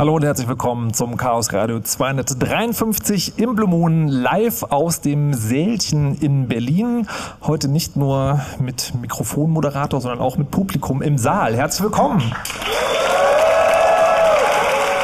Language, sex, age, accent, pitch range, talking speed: German, male, 40-59, German, 125-160 Hz, 115 wpm